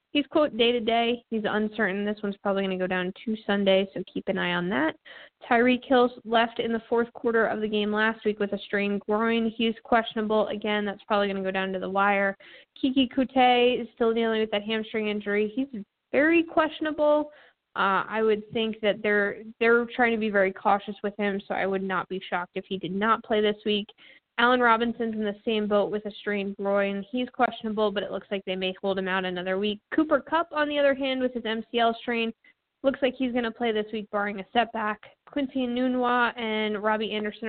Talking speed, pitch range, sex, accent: 220 wpm, 200-240 Hz, female, American